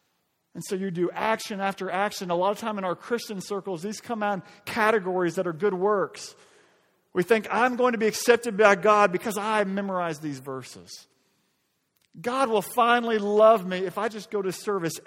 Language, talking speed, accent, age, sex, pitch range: English, 195 wpm, American, 40-59, male, 165-210 Hz